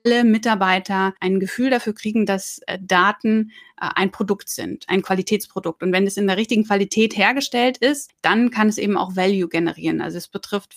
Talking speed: 180 wpm